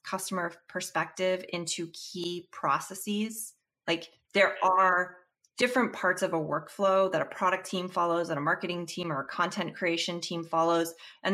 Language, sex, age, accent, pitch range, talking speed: English, female, 20-39, American, 165-200 Hz, 155 wpm